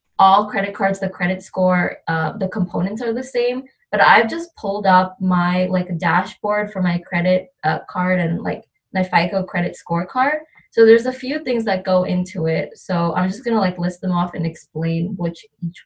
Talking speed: 200 wpm